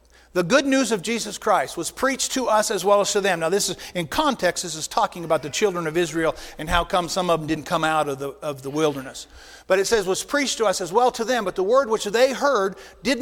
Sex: male